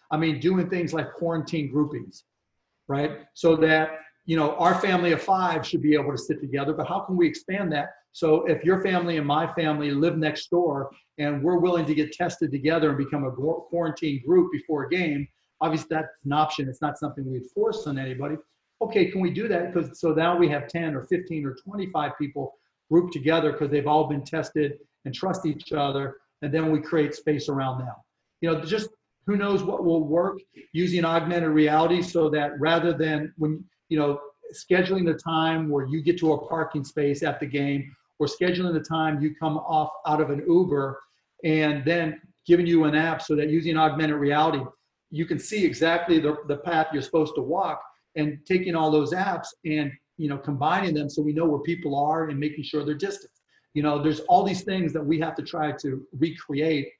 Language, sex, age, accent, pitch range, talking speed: English, male, 40-59, American, 150-170 Hz, 205 wpm